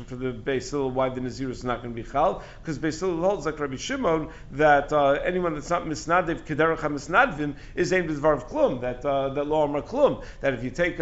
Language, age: English, 50-69